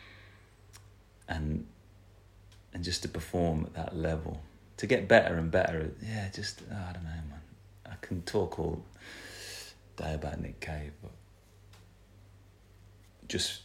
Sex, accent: male, British